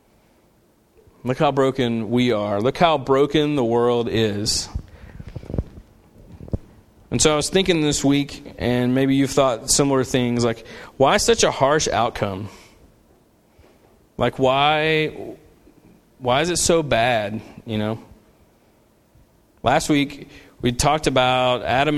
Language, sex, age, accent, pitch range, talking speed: English, male, 30-49, American, 115-140 Hz, 125 wpm